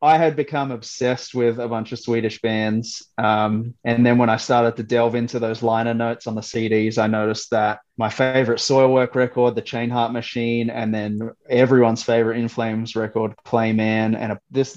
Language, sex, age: English, male, 20-39